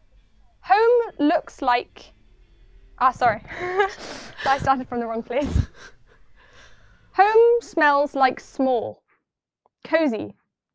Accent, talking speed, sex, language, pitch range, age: British, 90 wpm, female, English, 235-305 Hz, 10-29